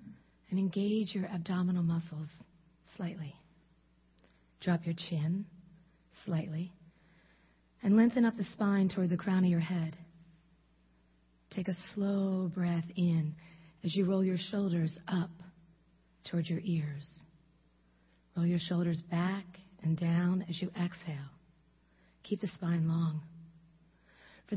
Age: 40-59